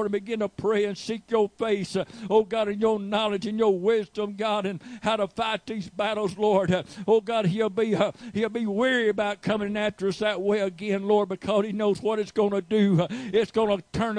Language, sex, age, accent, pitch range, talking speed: English, male, 60-79, American, 195-220 Hz, 235 wpm